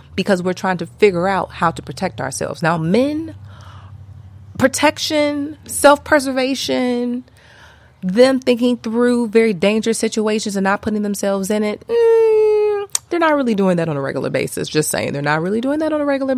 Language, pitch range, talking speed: English, 150-220 Hz, 170 wpm